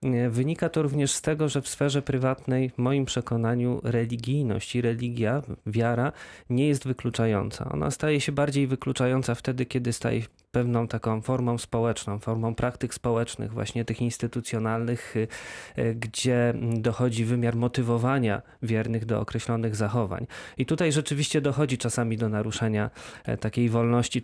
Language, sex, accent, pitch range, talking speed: Polish, male, native, 115-130 Hz, 135 wpm